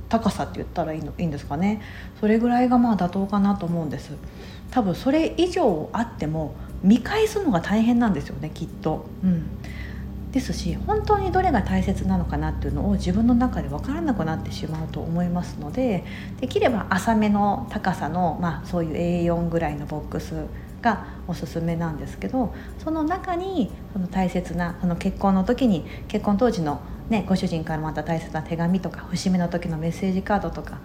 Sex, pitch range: female, 170-240 Hz